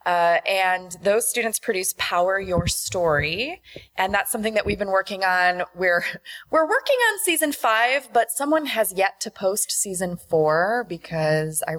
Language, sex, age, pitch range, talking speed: English, female, 20-39, 180-250 Hz, 165 wpm